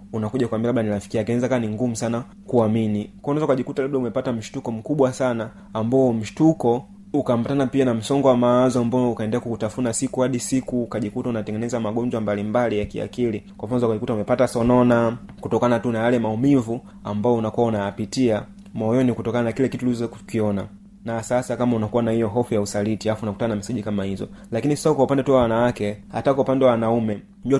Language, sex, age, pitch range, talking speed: Swahili, male, 30-49, 110-130 Hz, 185 wpm